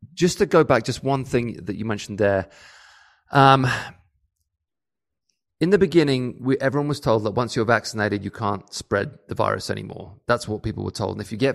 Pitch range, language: 105-130 Hz, English